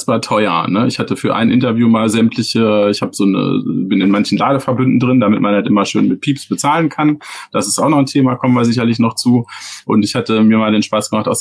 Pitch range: 105-125 Hz